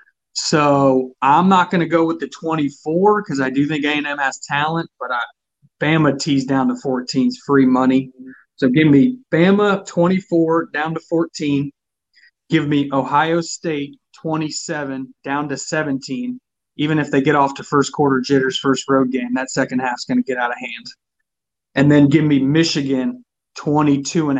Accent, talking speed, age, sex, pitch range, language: American, 170 wpm, 30-49, male, 135-155 Hz, English